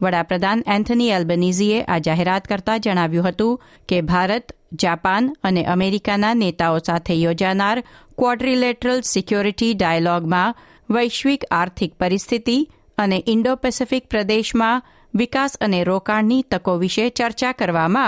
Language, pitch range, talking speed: Gujarati, 180-235 Hz, 110 wpm